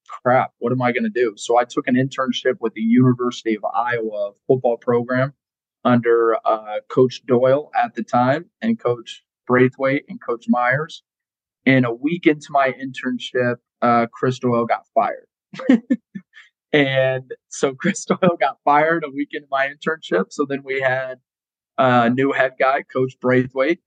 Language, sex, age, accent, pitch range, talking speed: English, male, 20-39, American, 120-135 Hz, 160 wpm